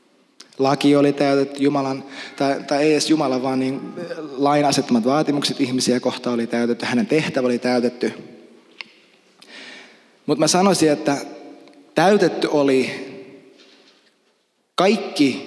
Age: 20-39